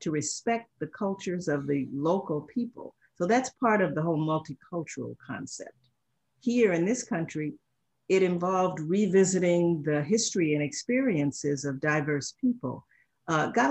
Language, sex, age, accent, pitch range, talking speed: English, female, 50-69, American, 150-200 Hz, 140 wpm